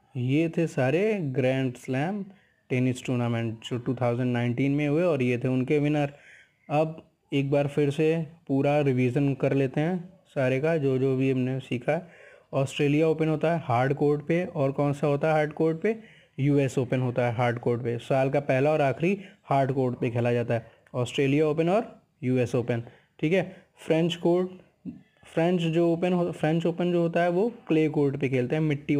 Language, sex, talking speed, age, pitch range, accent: Hindi, male, 190 wpm, 20-39, 135-165 Hz, native